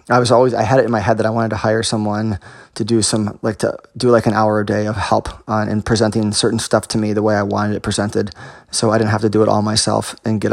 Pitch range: 110-115 Hz